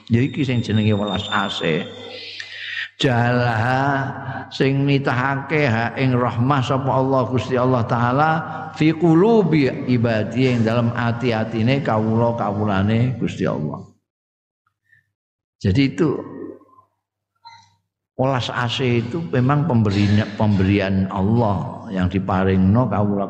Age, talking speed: 50-69, 95 wpm